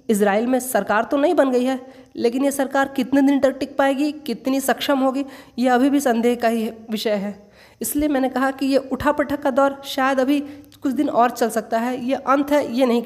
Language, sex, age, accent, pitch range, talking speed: Hindi, female, 20-39, native, 240-285 Hz, 225 wpm